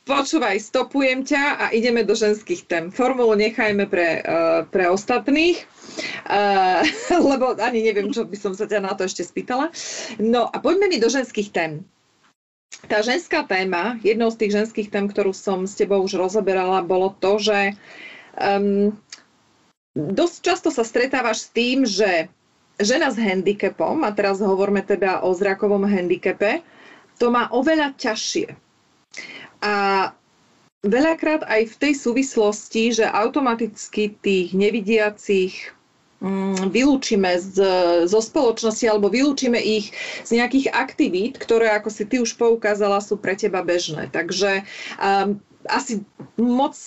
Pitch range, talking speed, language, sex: 195-250 Hz, 135 wpm, Slovak, female